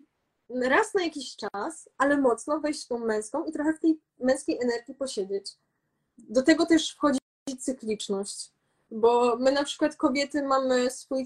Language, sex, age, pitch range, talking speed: Polish, female, 20-39, 230-275 Hz, 155 wpm